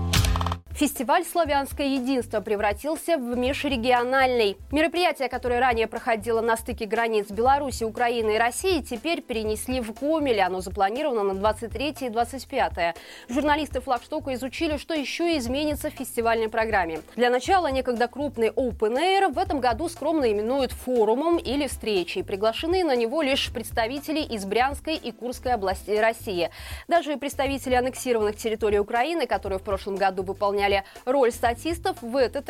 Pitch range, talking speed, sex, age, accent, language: 220-280 Hz, 140 wpm, female, 20-39, native, Russian